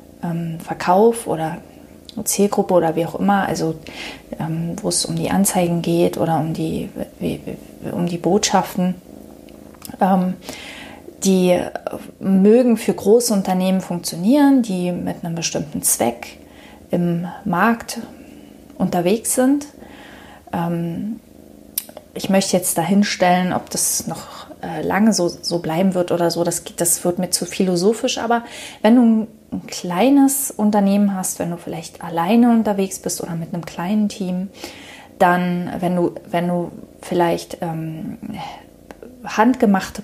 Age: 30-49